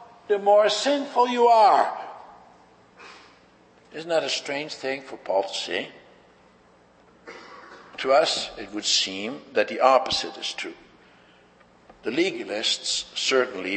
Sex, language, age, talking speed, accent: male, English, 60-79, 120 wpm, American